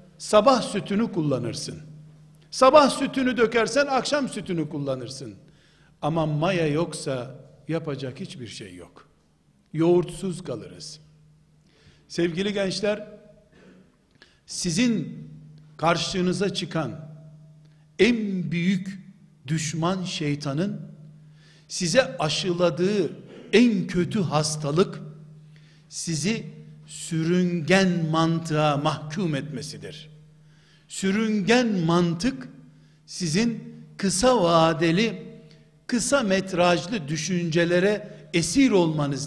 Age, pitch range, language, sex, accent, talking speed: 60-79, 155-205 Hz, Turkish, male, native, 70 wpm